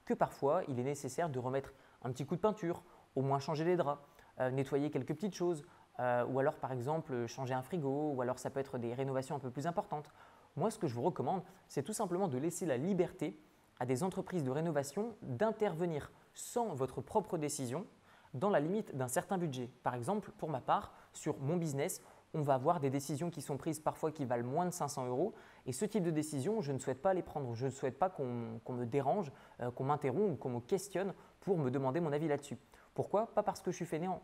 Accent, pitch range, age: French, 135-185 Hz, 20-39